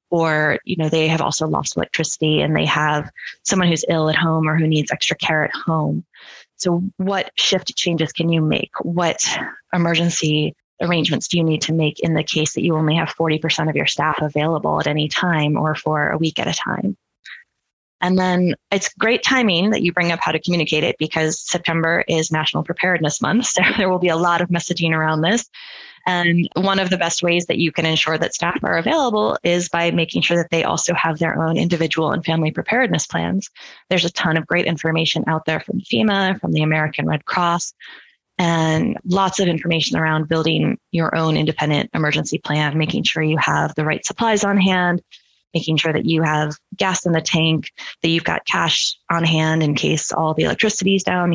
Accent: American